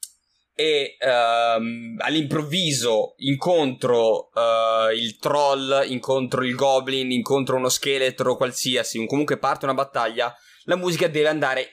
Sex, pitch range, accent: male, 125-160 Hz, native